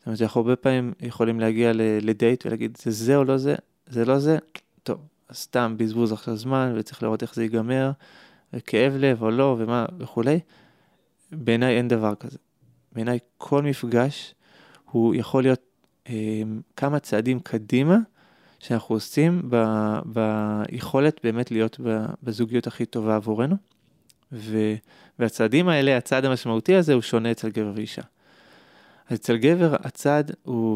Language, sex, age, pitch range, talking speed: Hebrew, male, 20-39, 110-130 Hz, 140 wpm